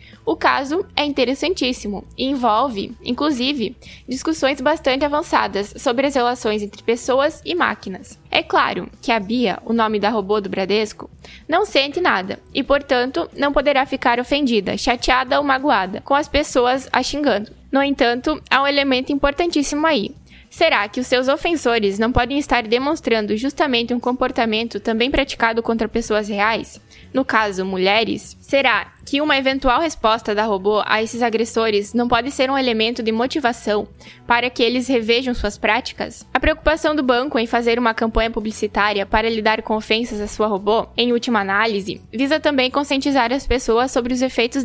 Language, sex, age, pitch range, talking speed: Portuguese, female, 10-29, 225-275 Hz, 165 wpm